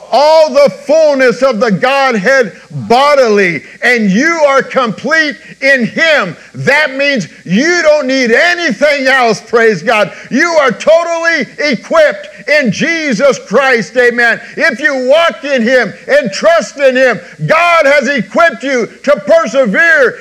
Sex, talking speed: male, 135 wpm